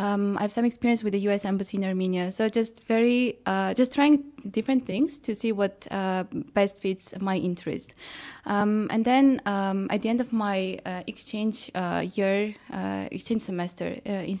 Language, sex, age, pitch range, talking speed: English, female, 20-39, 195-235 Hz, 190 wpm